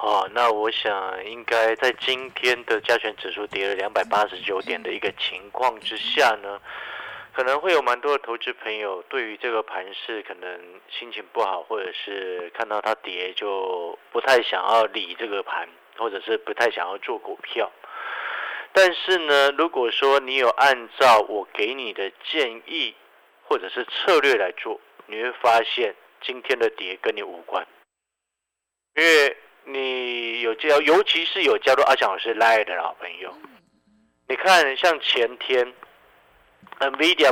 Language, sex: Chinese, male